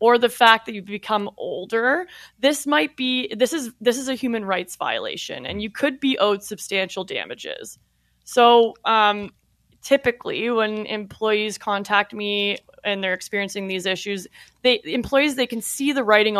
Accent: American